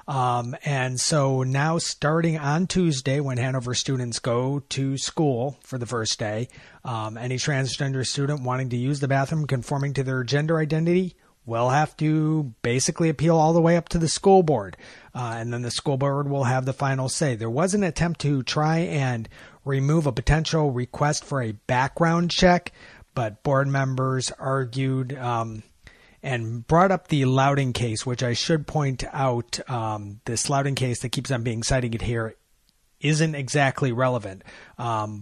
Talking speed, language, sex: 170 wpm, English, male